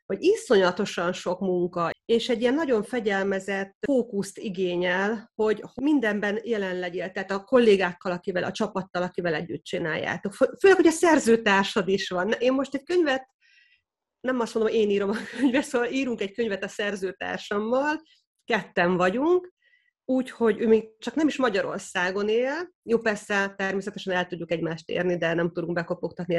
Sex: female